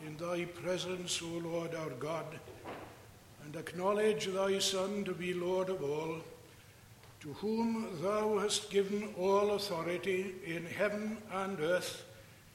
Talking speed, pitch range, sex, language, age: 130 wpm, 145-210 Hz, male, English, 60-79